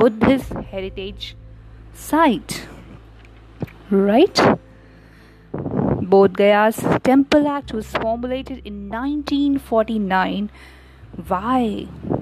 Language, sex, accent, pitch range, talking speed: English, female, Indian, 185-275 Hz, 55 wpm